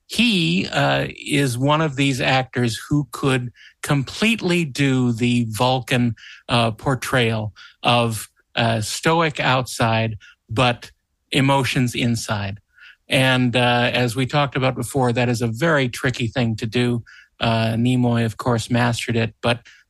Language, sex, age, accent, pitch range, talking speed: English, male, 50-69, American, 115-140 Hz, 135 wpm